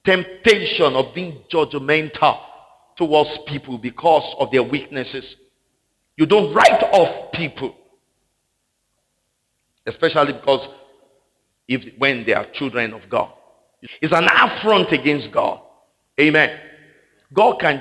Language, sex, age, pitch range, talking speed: English, male, 50-69, 135-185 Hz, 110 wpm